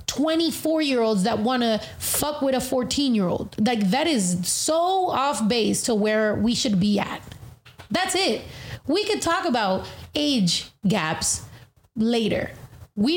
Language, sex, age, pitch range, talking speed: English, female, 20-39, 210-275 Hz, 155 wpm